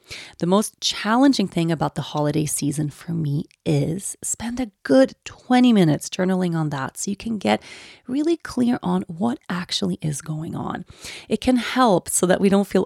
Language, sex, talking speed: English, female, 180 wpm